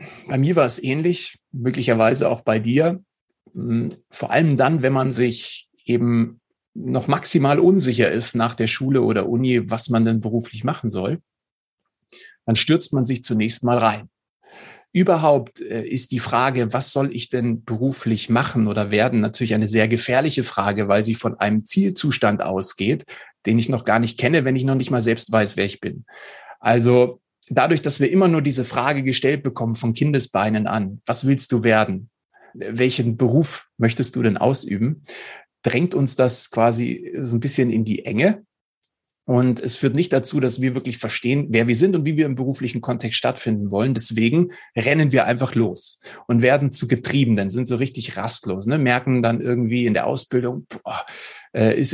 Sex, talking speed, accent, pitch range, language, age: male, 175 wpm, German, 115-135 Hz, German, 40-59